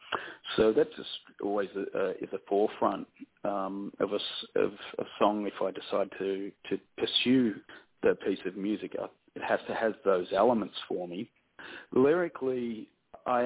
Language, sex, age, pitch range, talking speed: English, male, 40-59, 100-115 Hz, 160 wpm